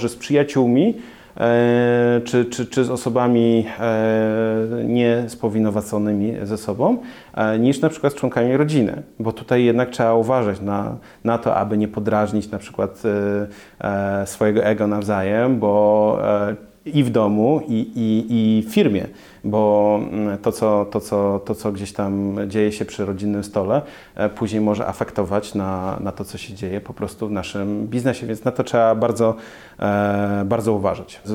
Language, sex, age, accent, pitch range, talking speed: Polish, male, 30-49, native, 105-120 Hz, 140 wpm